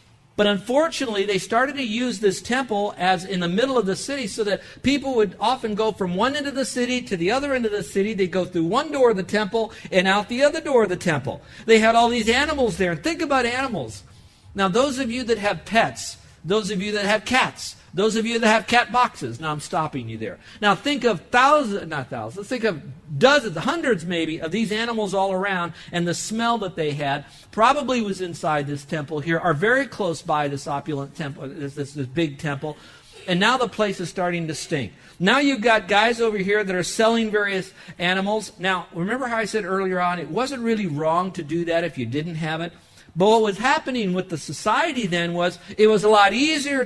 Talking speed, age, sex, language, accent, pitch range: 225 wpm, 50-69, male, English, American, 180-250 Hz